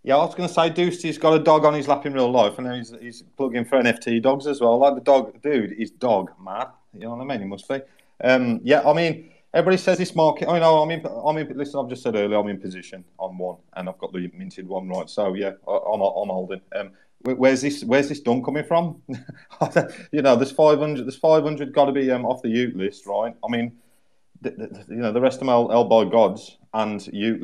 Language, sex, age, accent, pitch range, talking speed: English, male, 30-49, British, 110-135 Hz, 255 wpm